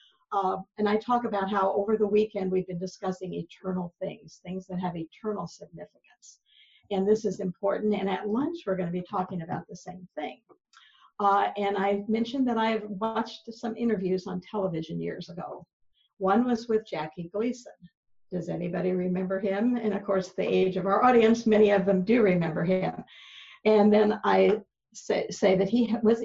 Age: 50-69